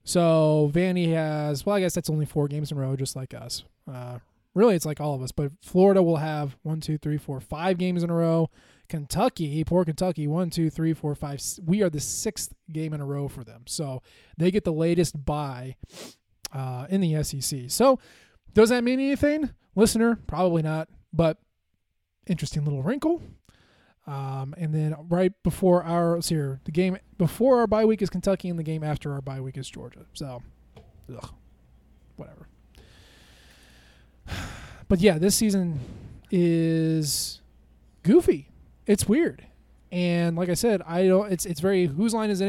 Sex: male